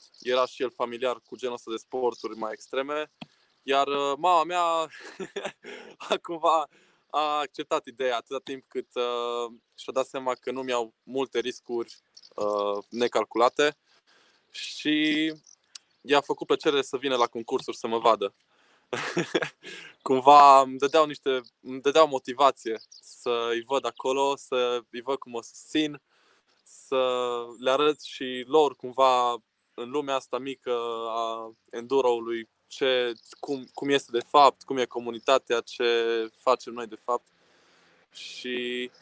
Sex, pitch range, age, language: male, 115-140 Hz, 20-39, Romanian